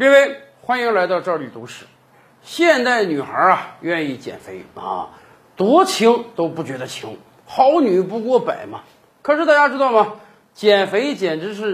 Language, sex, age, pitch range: Chinese, male, 50-69, 205-295 Hz